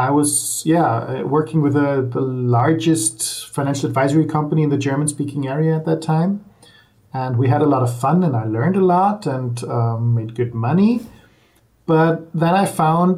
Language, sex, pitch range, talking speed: English, male, 125-155 Hz, 180 wpm